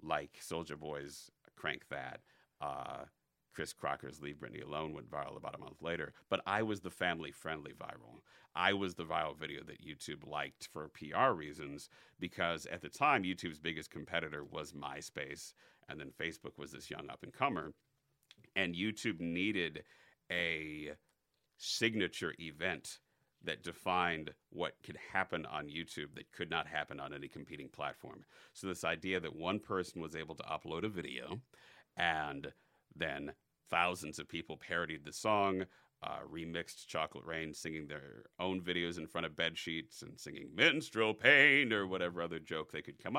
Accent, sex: American, male